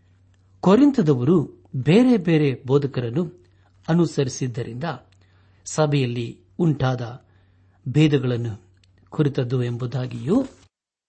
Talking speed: 55 wpm